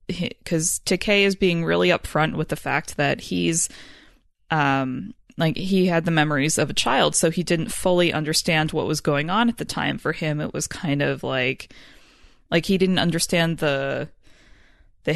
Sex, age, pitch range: female, 20-39, 150-190 Hz